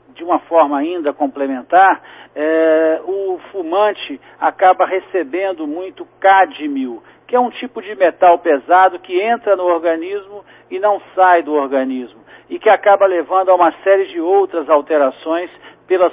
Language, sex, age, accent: Portuguese, male, 60-79, Brazilian